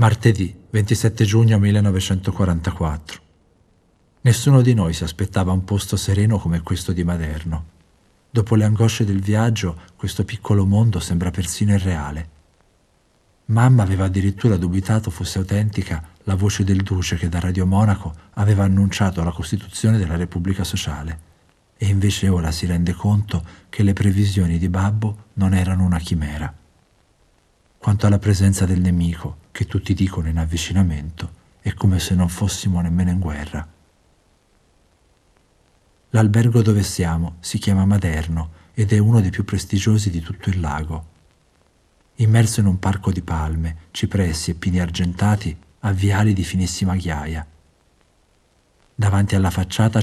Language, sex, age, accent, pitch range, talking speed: Italian, male, 50-69, native, 85-100 Hz, 140 wpm